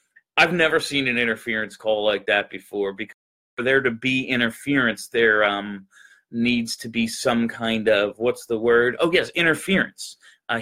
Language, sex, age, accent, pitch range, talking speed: English, male, 30-49, American, 110-140 Hz, 170 wpm